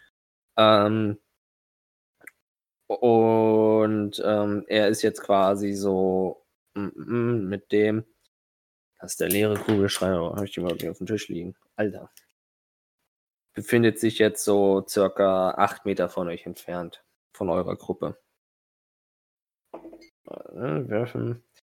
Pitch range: 100-115 Hz